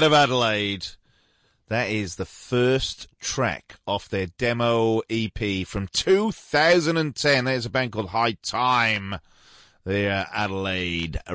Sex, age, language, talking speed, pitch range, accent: male, 30-49, English, 115 wpm, 95-130 Hz, British